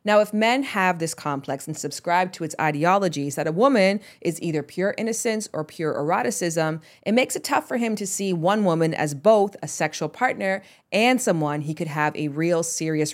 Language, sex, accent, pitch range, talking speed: English, female, American, 155-205 Hz, 200 wpm